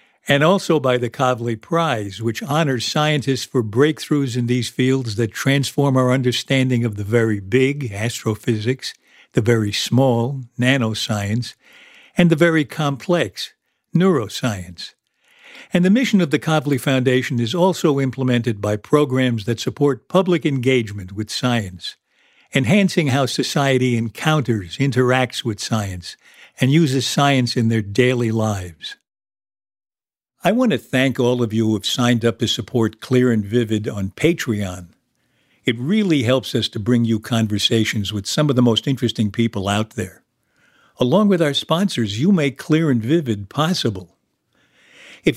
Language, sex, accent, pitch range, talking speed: English, male, American, 115-145 Hz, 145 wpm